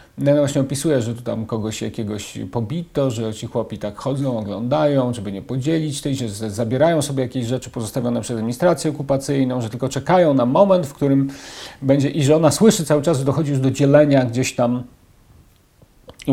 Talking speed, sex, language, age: 185 wpm, male, Polish, 40-59